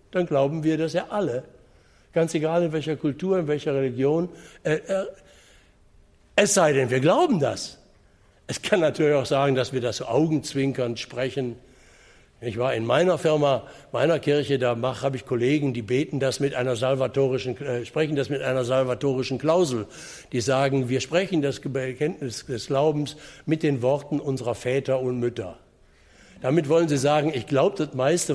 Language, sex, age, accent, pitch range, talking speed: German, male, 60-79, German, 130-155 Hz, 165 wpm